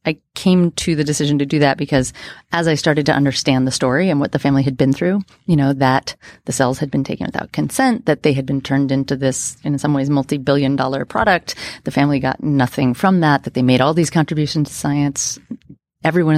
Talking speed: 225 wpm